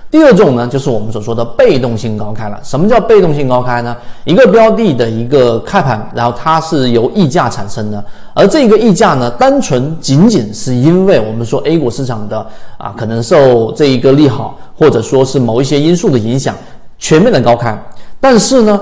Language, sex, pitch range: Chinese, male, 120-180 Hz